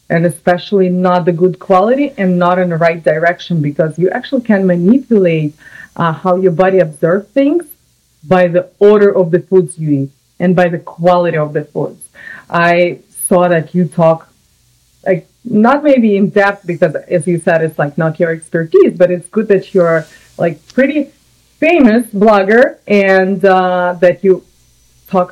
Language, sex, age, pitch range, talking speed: English, female, 30-49, 165-195 Hz, 170 wpm